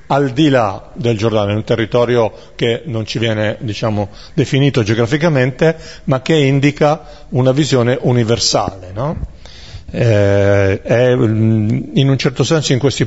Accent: native